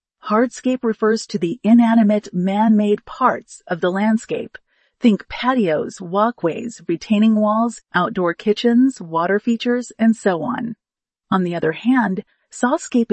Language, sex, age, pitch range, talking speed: English, female, 40-59, 195-245 Hz, 125 wpm